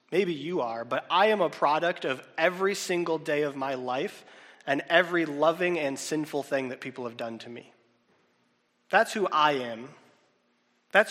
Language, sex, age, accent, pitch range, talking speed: English, male, 30-49, American, 145-210 Hz, 175 wpm